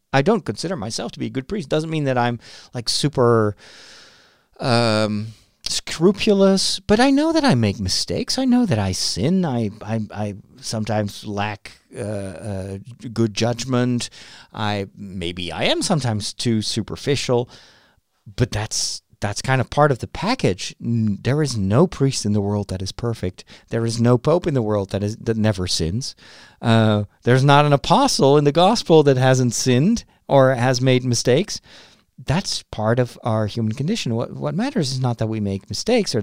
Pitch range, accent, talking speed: 105-135 Hz, American, 175 wpm